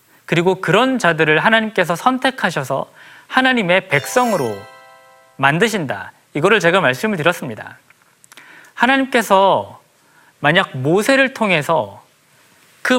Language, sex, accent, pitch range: Korean, male, native, 170-245 Hz